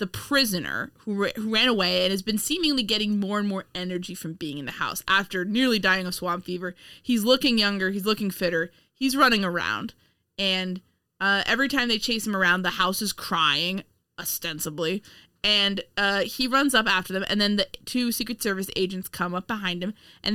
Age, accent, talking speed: 20-39, American, 195 wpm